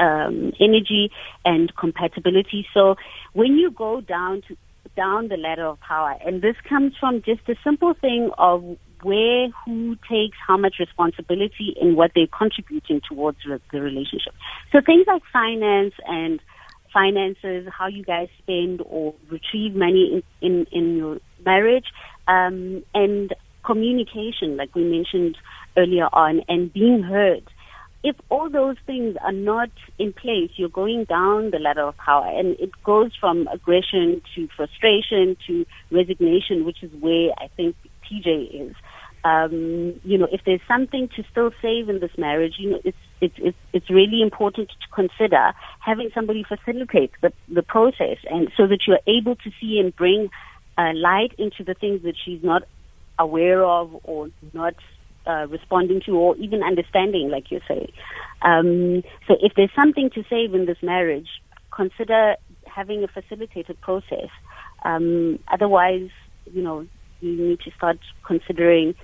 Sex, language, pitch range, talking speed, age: female, English, 170-220 Hz, 155 wpm, 30-49